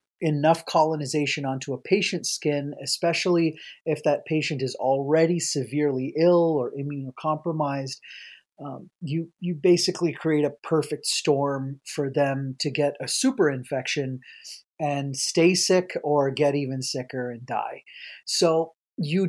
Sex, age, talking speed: male, 30-49, 130 wpm